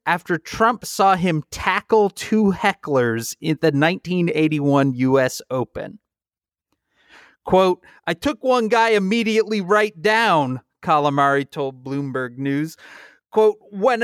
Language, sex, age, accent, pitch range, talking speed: English, male, 30-49, American, 135-200 Hz, 110 wpm